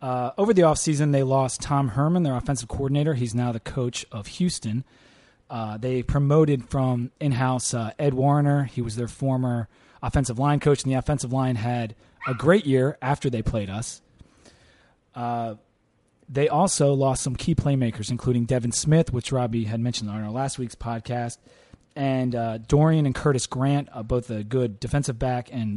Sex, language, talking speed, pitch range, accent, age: male, English, 175 wpm, 120-145 Hz, American, 30-49